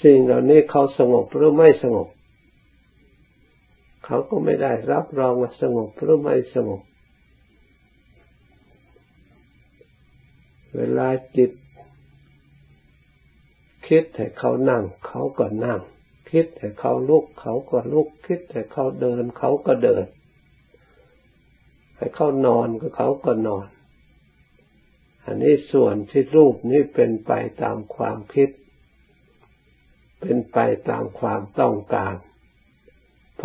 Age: 60-79